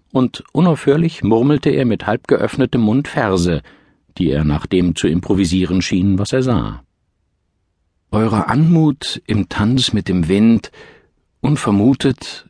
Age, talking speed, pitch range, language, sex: 50-69, 130 wpm, 85-115 Hz, German, male